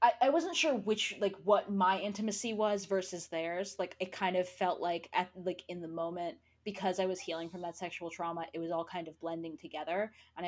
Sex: female